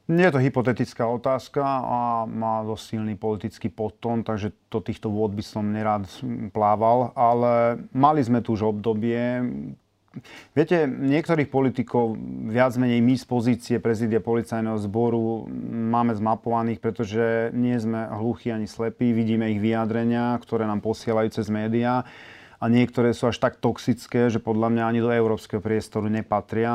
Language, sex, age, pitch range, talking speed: Slovak, male, 30-49, 110-120 Hz, 150 wpm